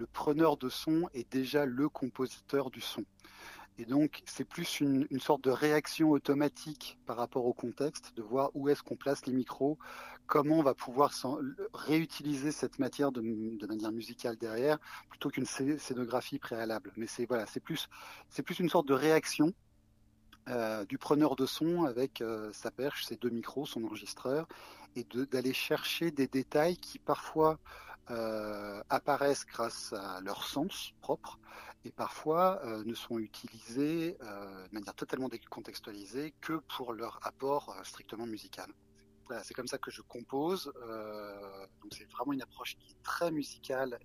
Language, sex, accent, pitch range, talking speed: French, male, French, 115-145 Hz, 170 wpm